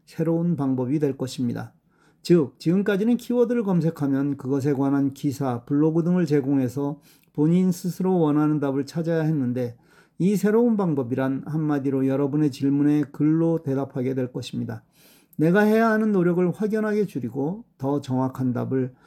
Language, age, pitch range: Korean, 40-59, 140-170 Hz